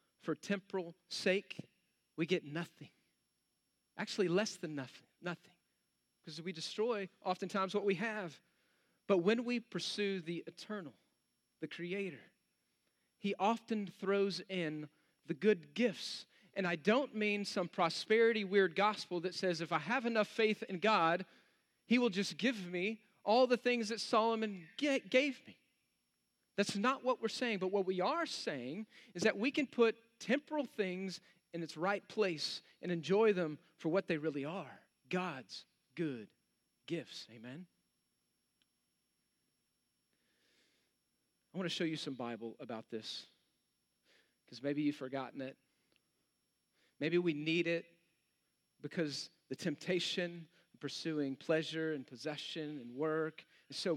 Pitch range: 155-210 Hz